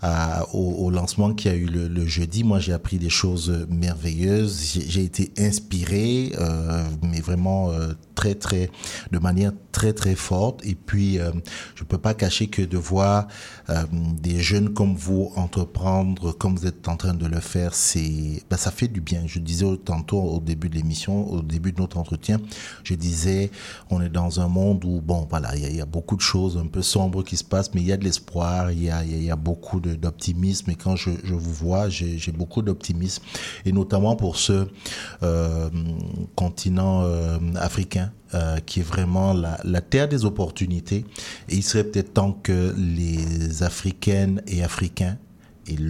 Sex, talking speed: male, 195 wpm